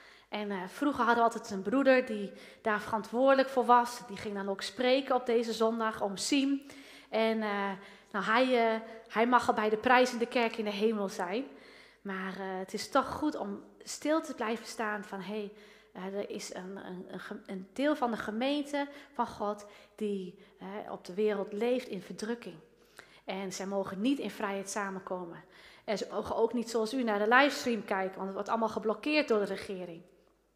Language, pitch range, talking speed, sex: Dutch, 210-280 Hz, 185 wpm, female